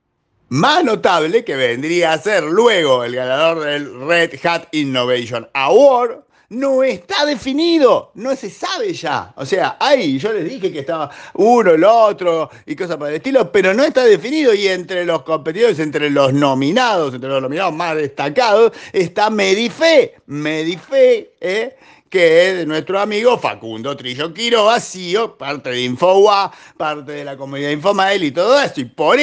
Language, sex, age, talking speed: Spanish, male, 50-69, 160 wpm